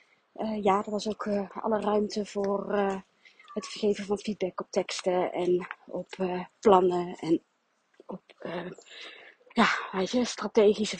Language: Dutch